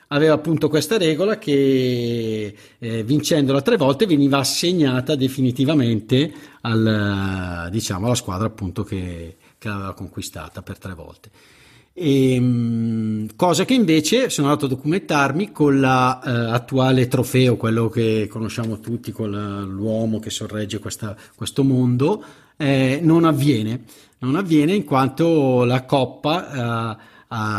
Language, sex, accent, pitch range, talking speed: Italian, male, native, 110-145 Hz, 130 wpm